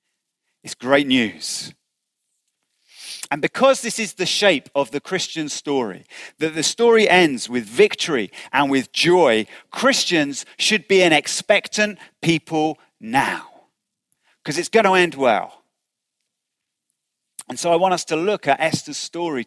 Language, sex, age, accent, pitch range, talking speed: English, male, 40-59, British, 150-195 Hz, 140 wpm